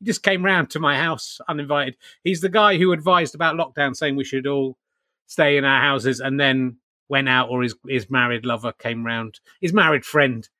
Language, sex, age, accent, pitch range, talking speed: English, male, 30-49, British, 130-180 Hz, 205 wpm